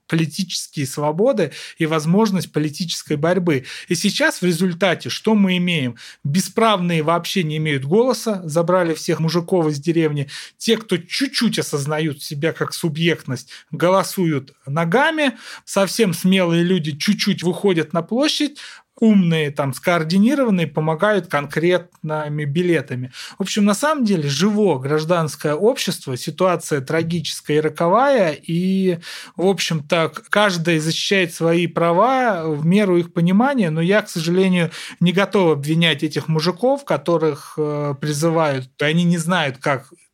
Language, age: Russian, 30-49